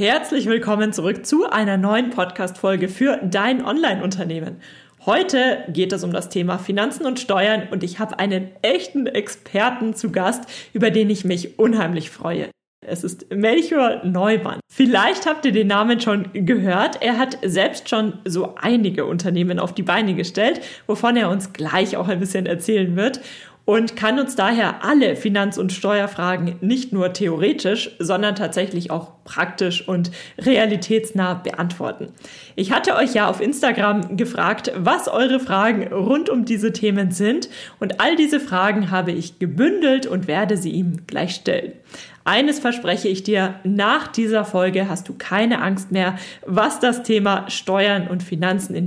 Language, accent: German, German